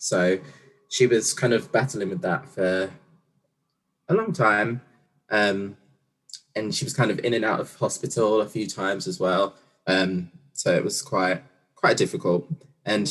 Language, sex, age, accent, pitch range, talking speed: English, male, 20-39, British, 100-145 Hz, 165 wpm